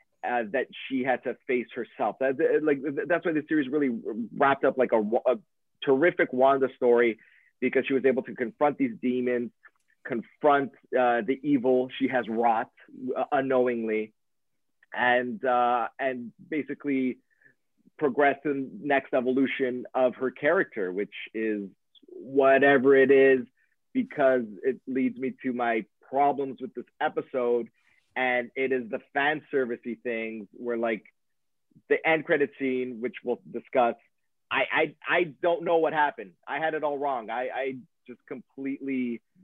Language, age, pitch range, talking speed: English, 30-49, 120-140 Hz, 145 wpm